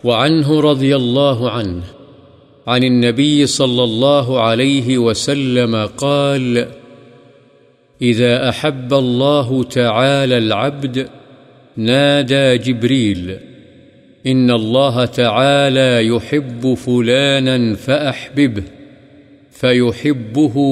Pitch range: 120-140 Hz